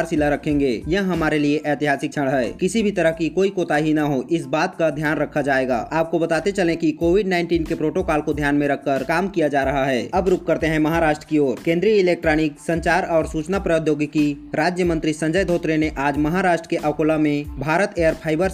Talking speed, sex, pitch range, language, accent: 210 wpm, male, 150-175 Hz, Hindi, native